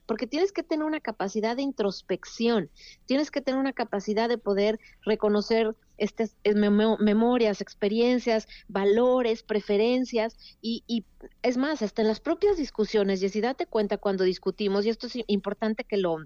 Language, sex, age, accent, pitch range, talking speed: Spanish, female, 40-59, Mexican, 210-250 Hz, 160 wpm